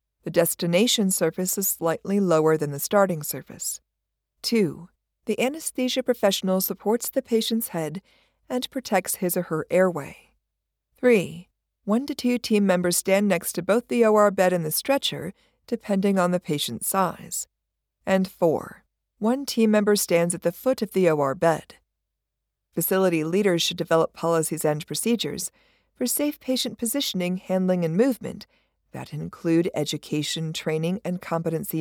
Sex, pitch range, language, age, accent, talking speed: female, 165-220 Hz, English, 50-69, American, 145 wpm